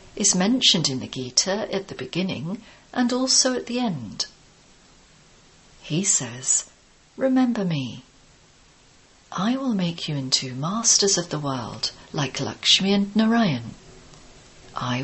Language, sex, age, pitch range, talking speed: English, female, 50-69, 140-220 Hz, 125 wpm